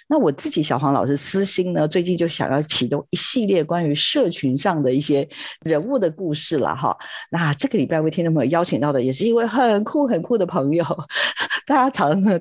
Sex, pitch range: female, 155-225 Hz